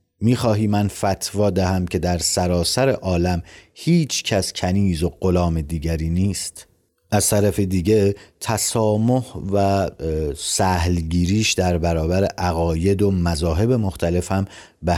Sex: male